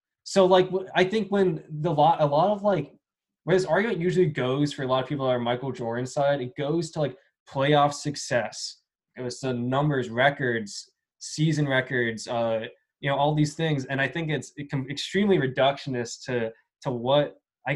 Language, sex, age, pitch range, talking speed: English, male, 10-29, 125-160 Hz, 195 wpm